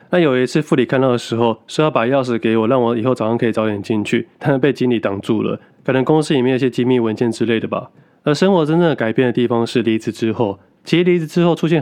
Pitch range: 115-140 Hz